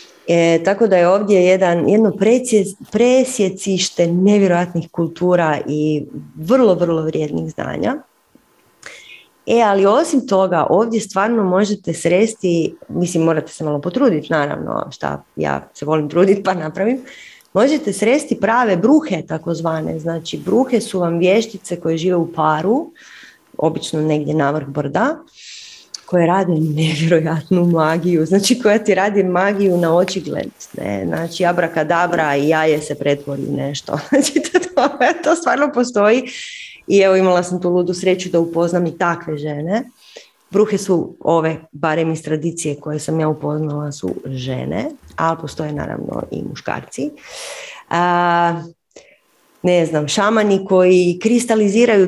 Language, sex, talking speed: Croatian, female, 130 wpm